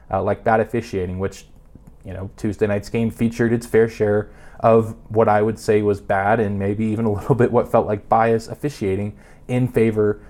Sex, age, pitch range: male, 20-39, 105-125 Hz